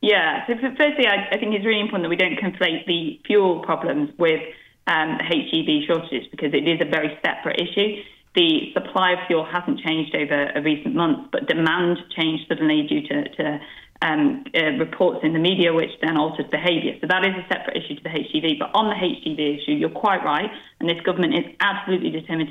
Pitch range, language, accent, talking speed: 160-195 Hz, English, British, 205 wpm